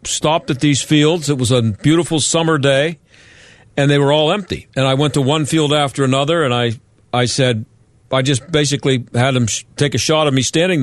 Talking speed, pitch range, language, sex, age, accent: 210 wpm, 125-155 Hz, English, male, 50-69, American